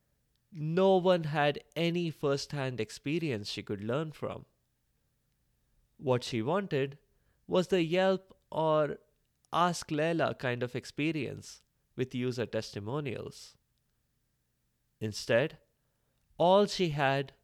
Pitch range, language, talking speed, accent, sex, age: 115-165 Hz, English, 100 wpm, Indian, male, 30-49